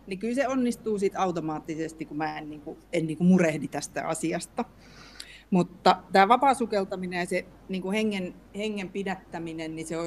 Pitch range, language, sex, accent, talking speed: 160-195 Hz, Finnish, female, native, 155 wpm